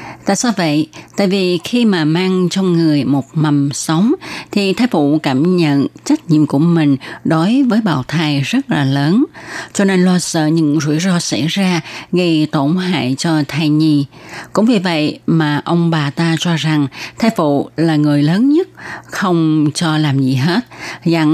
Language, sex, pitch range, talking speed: Vietnamese, female, 150-185 Hz, 185 wpm